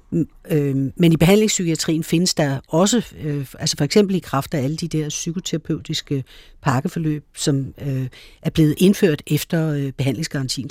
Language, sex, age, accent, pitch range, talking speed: Danish, female, 60-79, native, 140-165 Hz, 125 wpm